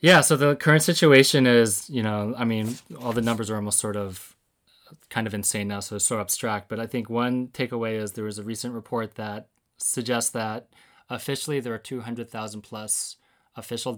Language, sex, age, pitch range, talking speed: English, male, 20-39, 105-125 Hz, 200 wpm